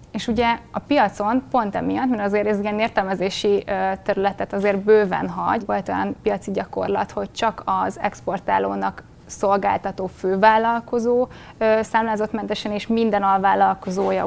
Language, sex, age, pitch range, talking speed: Hungarian, female, 20-39, 195-225 Hz, 125 wpm